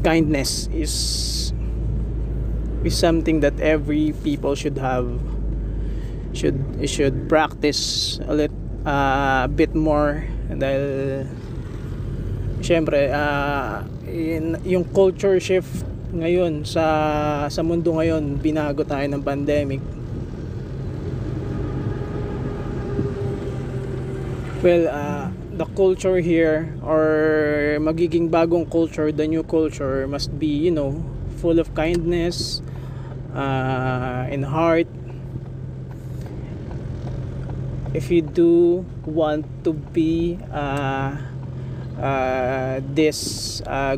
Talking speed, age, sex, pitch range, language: 95 wpm, 20-39, male, 130-160 Hz, Filipino